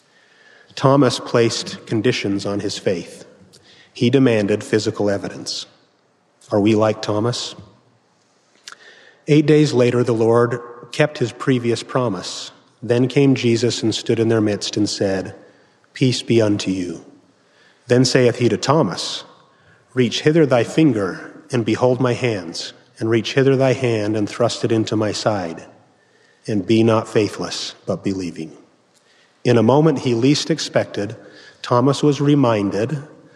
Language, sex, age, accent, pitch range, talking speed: English, male, 40-59, American, 110-135 Hz, 135 wpm